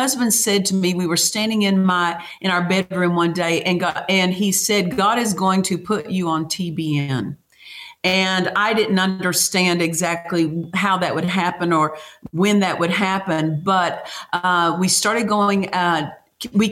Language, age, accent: English, 50-69, American